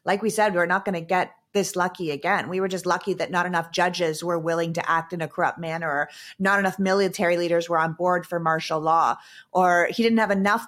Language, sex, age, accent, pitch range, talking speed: English, female, 30-49, American, 170-205 Hz, 240 wpm